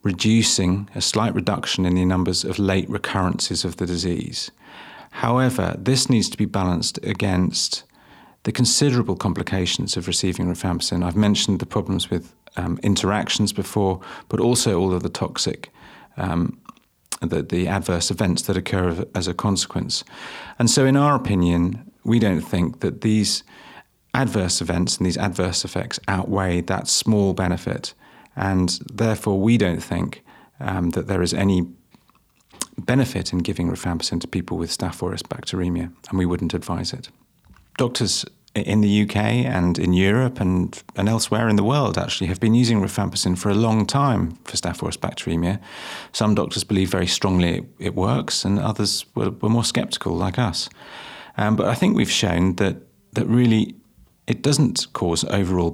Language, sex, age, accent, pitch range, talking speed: English, male, 40-59, British, 90-110 Hz, 160 wpm